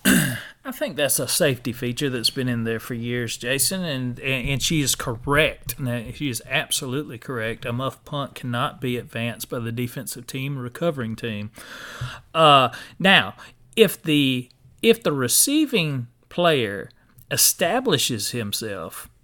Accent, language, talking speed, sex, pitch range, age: American, English, 135 wpm, male, 120-145 Hz, 40-59